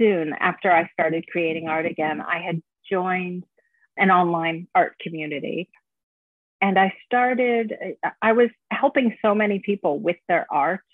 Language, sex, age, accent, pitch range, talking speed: English, female, 40-59, American, 175-225 Hz, 145 wpm